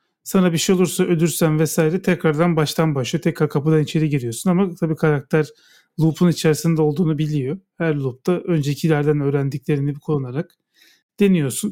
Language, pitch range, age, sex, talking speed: Turkish, 155-185 Hz, 40-59, male, 135 wpm